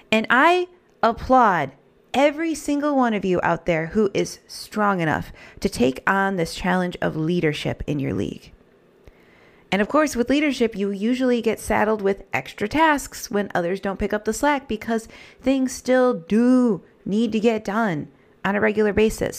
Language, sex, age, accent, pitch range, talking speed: English, female, 30-49, American, 185-245 Hz, 170 wpm